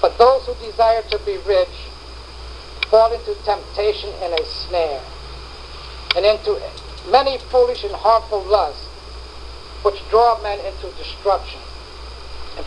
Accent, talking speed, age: American, 125 wpm, 60-79